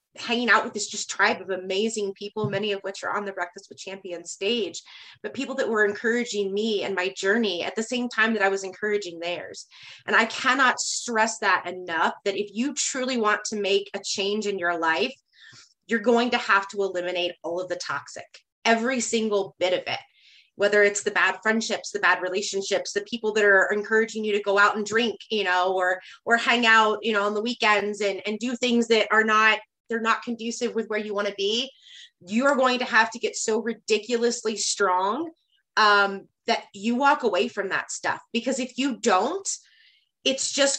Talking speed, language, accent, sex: 205 wpm, English, American, female